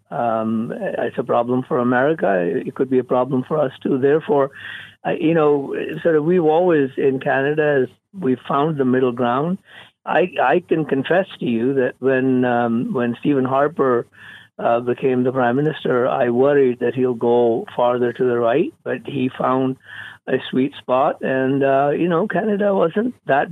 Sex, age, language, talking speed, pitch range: male, 50-69, English, 165 wpm, 125-150 Hz